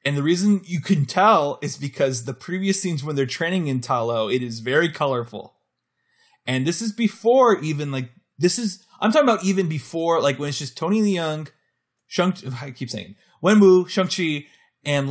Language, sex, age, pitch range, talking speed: English, male, 20-39, 130-185 Hz, 185 wpm